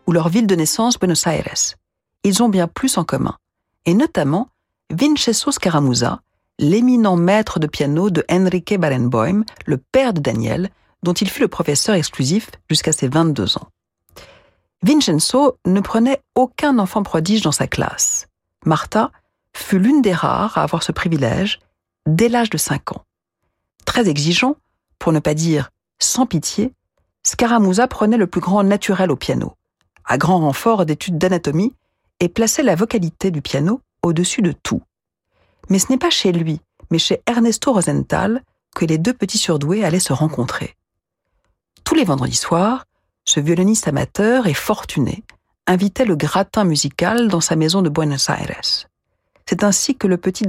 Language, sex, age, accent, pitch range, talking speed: French, female, 50-69, French, 155-220 Hz, 160 wpm